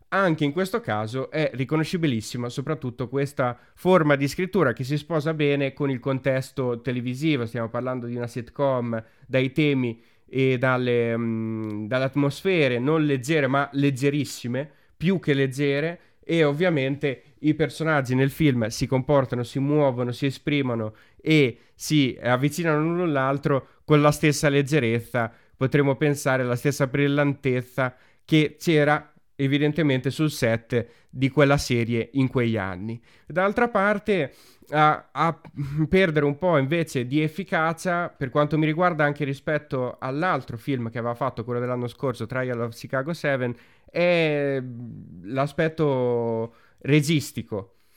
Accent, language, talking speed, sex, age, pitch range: native, Italian, 130 wpm, male, 20-39, 125-150 Hz